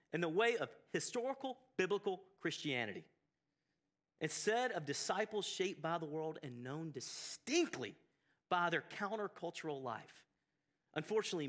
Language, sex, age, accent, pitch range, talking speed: English, male, 40-59, American, 145-205 Hz, 115 wpm